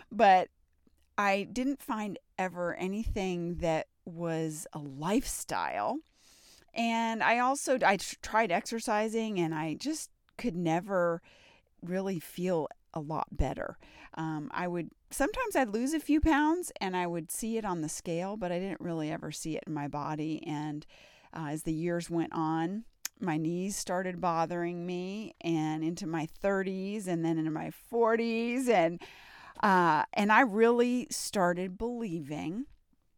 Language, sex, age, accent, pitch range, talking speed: English, female, 30-49, American, 165-230 Hz, 145 wpm